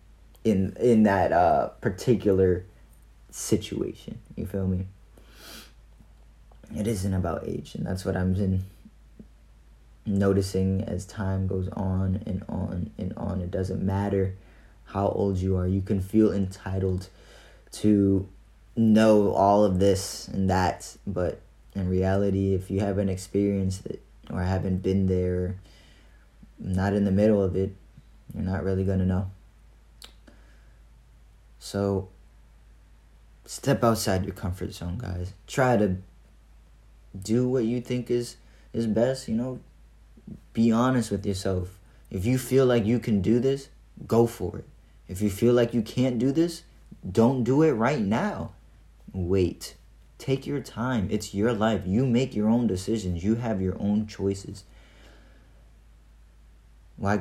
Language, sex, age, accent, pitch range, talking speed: English, male, 20-39, American, 95-110 Hz, 140 wpm